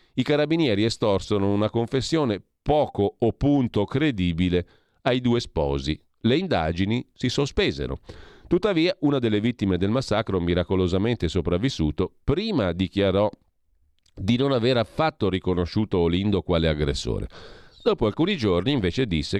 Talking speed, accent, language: 120 wpm, native, Italian